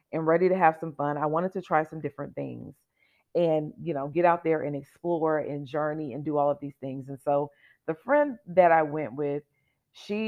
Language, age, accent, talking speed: English, 40-59, American, 220 wpm